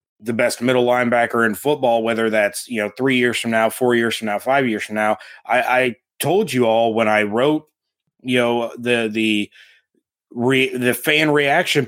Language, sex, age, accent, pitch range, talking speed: English, male, 20-39, American, 115-140 Hz, 190 wpm